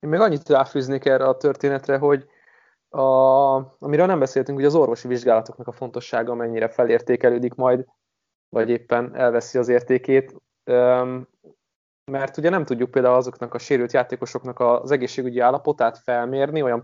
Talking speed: 145 wpm